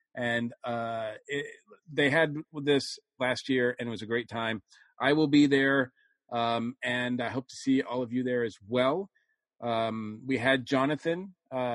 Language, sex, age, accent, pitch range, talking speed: English, male, 40-59, American, 115-140 Hz, 175 wpm